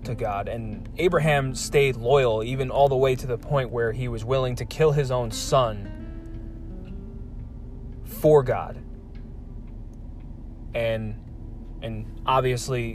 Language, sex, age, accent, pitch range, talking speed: English, male, 20-39, American, 110-125 Hz, 125 wpm